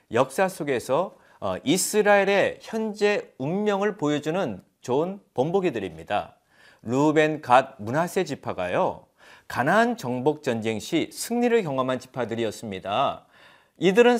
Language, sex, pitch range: Korean, male, 135-200 Hz